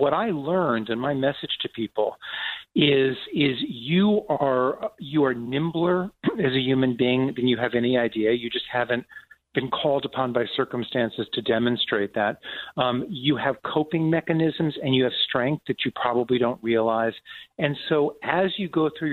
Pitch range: 115-150 Hz